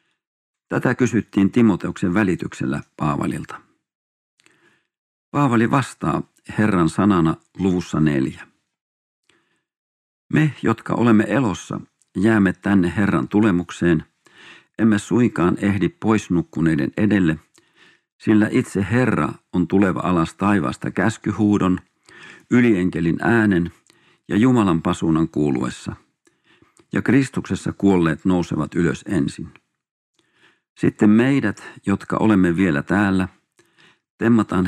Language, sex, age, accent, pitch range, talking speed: Finnish, male, 50-69, native, 80-110 Hz, 90 wpm